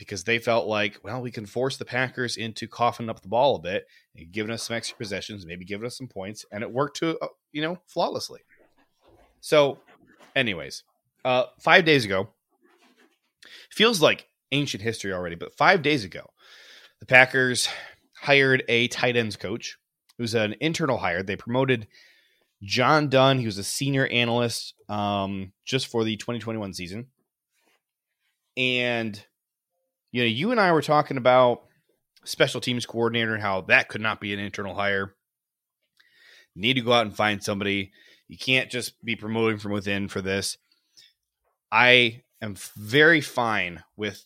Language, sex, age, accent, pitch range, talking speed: English, male, 20-39, American, 105-130 Hz, 165 wpm